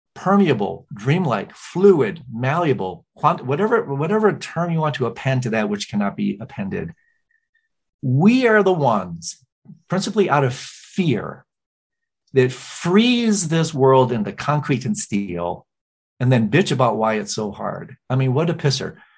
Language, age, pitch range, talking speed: English, 40-59, 120-195 Hz, 145 wpm